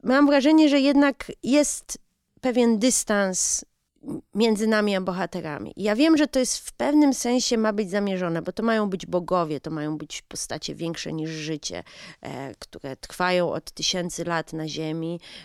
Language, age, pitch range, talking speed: Polish, 30-49, 180-265 Hz, 160 wpm